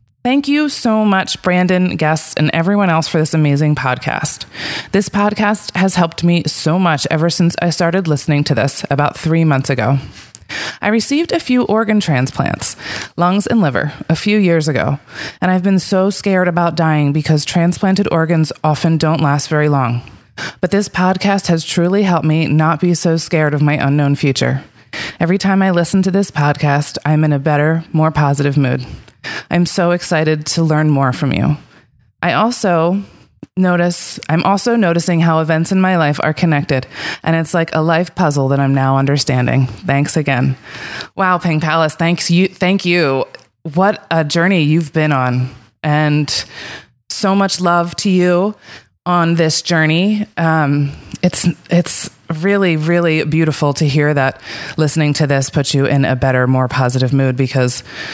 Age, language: 20-39, English